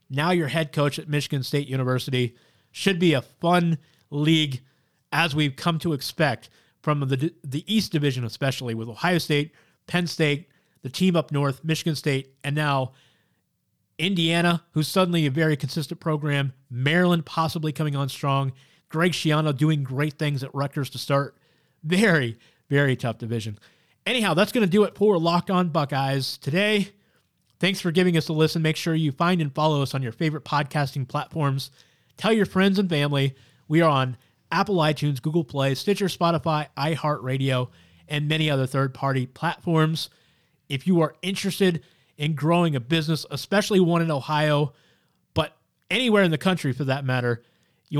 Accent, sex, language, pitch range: American, male, English, 135-170 Hz